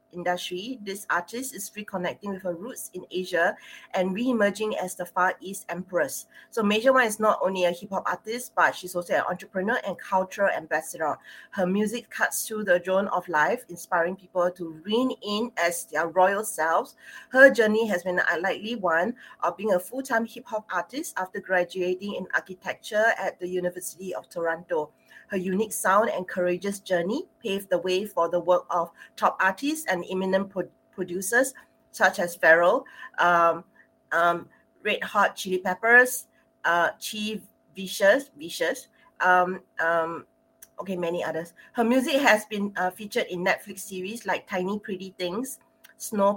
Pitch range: 180-215 Hz